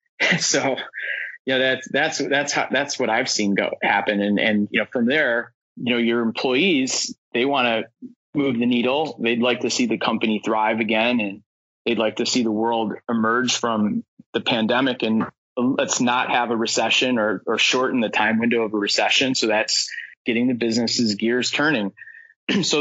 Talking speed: 180 wpm